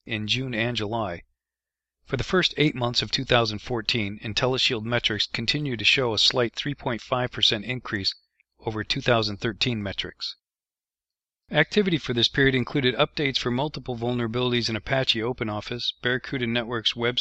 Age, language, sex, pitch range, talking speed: 40-59, English, male, 110-135 Hz, 135 wpm